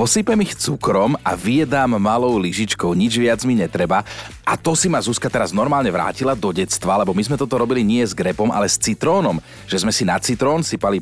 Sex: male